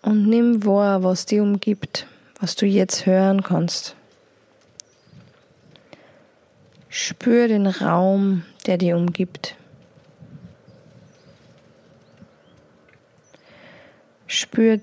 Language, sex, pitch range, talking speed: German, female, 185-220 Hz, 75 wpm